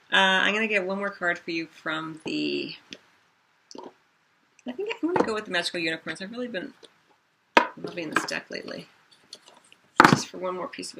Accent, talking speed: American, 190 wpm